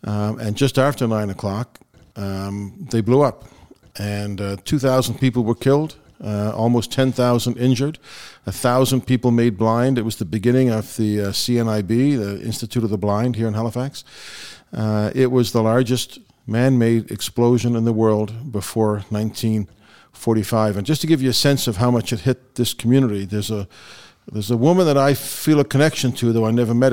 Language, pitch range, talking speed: English, 110-130 Hz, 185 wpm